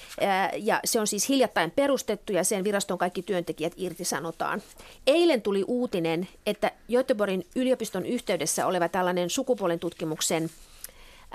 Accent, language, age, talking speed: native, Finnish, 40-59, 120 wpm